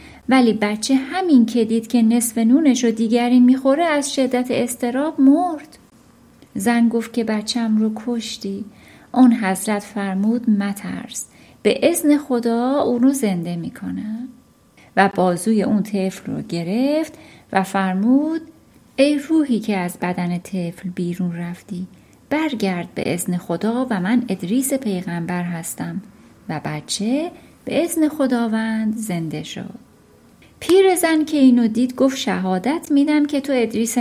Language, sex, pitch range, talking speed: Persian, female, 200-275 Hz, 130 wpm